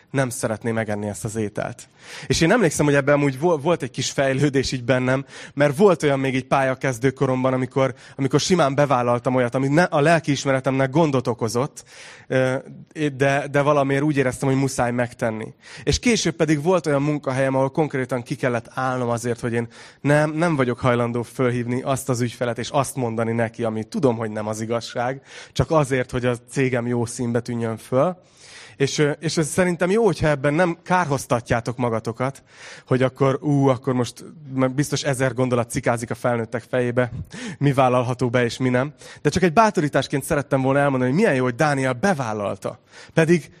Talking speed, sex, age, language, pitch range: 170 wpm, male, 20-39, Hungarian, 125-150 Hz